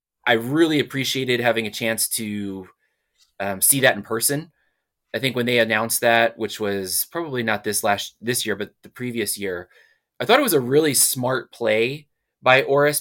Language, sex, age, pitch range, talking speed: English, male, 20-39, 105-140 Hz, 185 wpm